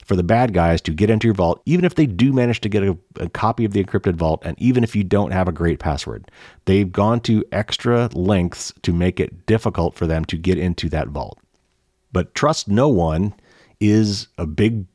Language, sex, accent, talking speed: English, male, American, 220 wpm